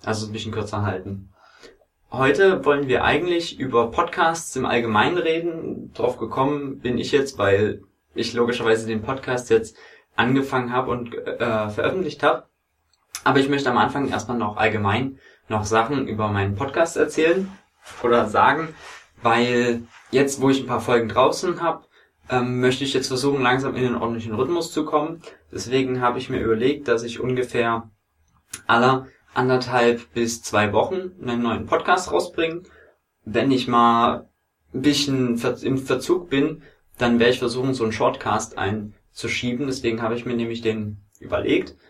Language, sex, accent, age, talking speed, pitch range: English, male, German, 20-39, 155 wpm, 110-135 Hz